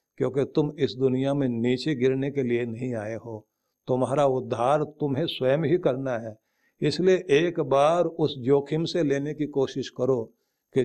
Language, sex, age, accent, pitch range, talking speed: Hindi, male, 50-69, native, 125-155 Hz, 165 wpm